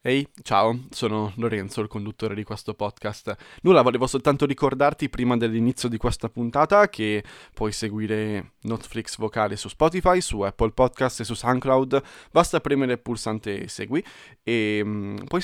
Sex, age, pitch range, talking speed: male, 20-39, 115-145 Hz, 155 wpm